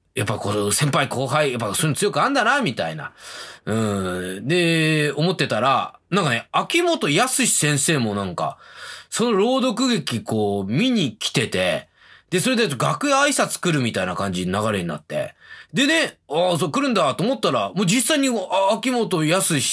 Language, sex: Japanese, male